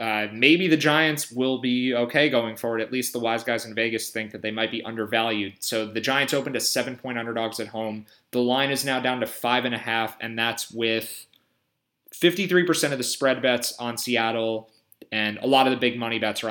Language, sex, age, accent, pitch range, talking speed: English, male, 20-39, American, 105-125 Hz, 220 wpm